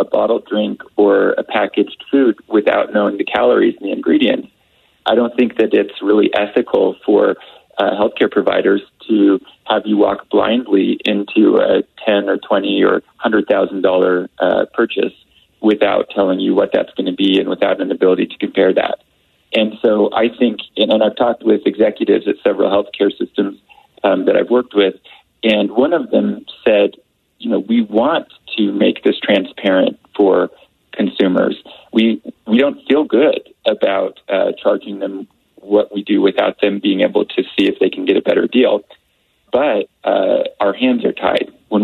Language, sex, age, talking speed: English, male, 30-49, 170 wpm